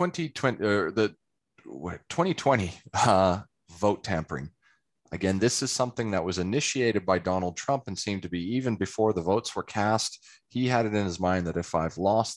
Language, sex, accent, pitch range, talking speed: English, male, American, 90-125 Hz, 180 wpm